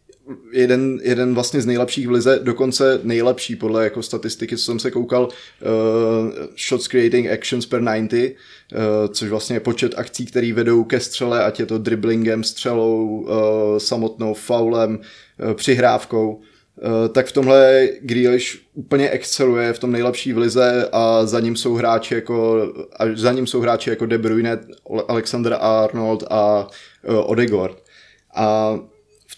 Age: 20-39